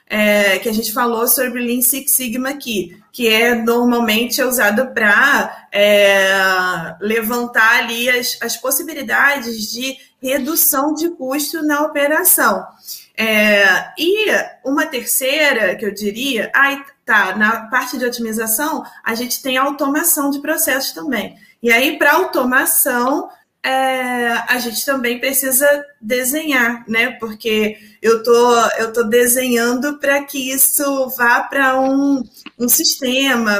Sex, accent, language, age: female, Brazilian, Portuguese, 20-39